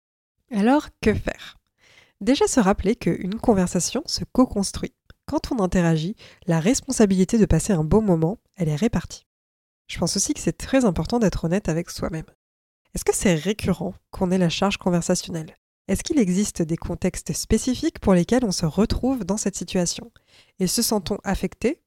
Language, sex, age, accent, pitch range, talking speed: French, female, 20-39, French, 175-225 Hz, 165 wpm